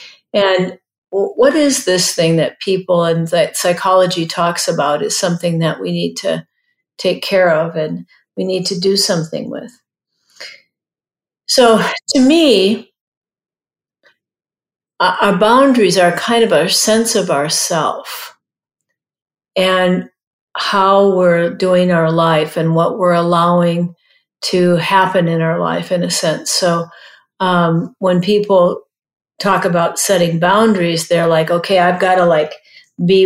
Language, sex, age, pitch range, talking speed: English, female, 50-69, 175-210 Hz, 135 wpm